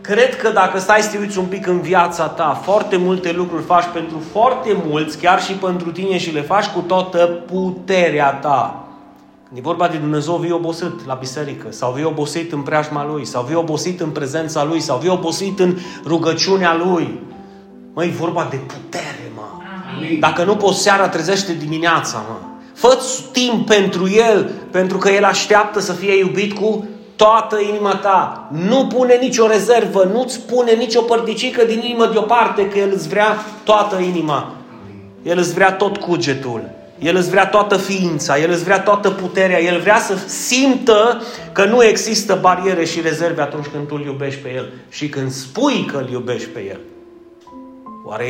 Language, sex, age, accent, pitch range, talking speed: Romanian, male, 30-49, native, 160-205 Hz, 175 wpm